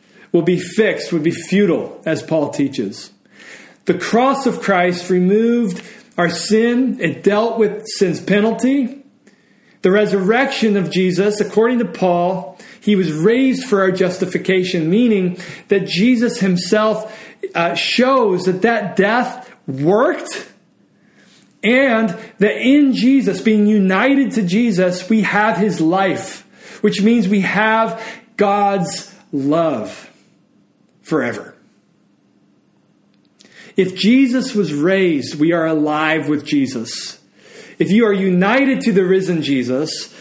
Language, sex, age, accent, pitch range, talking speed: English, male, 40-59, American, 175-225 Hz, 120 wpm